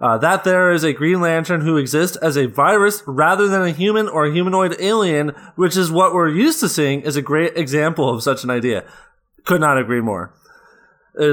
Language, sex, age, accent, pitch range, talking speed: English, male, 20-39, American, 145-190 Hz, 205 wpm